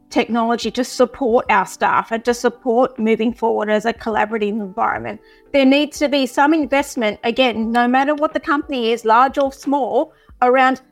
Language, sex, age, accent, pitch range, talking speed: English, female, 30-49, Australian, 230-285 Hz, 170 wpm